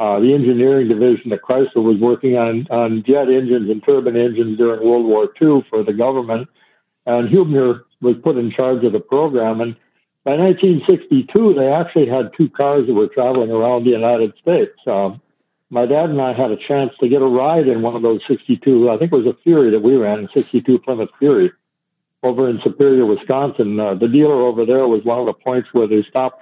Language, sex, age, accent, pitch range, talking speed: English, male, 60-79, American, 115-140 Hz, 210 wpm